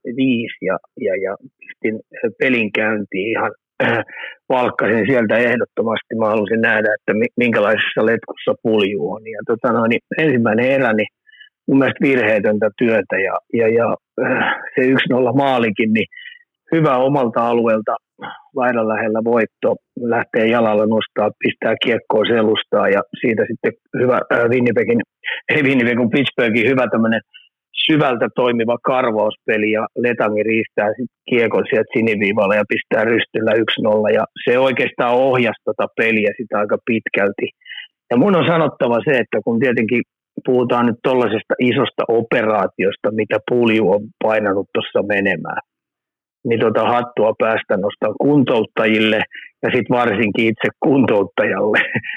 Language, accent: Finnish, native